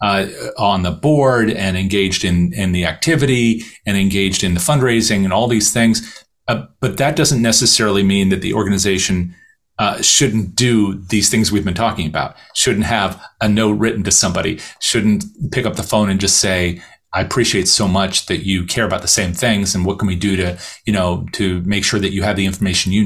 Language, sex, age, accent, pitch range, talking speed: English, male, 40-59, American, 95-115 Hz, 210 wpm